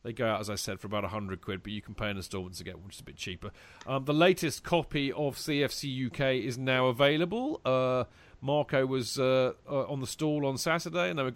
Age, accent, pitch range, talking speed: 40-59, British, 110-145 Hz, 250 wpm